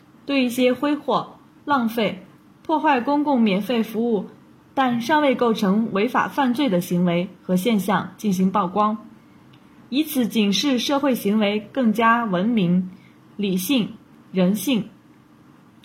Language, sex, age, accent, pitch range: Chinese, female, 20-39, native, 195-255 Hz